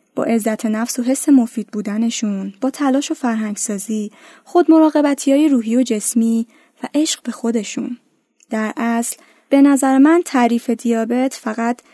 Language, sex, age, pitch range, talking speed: Persian, female, 10-29, 220-285 Hz, 145 wpm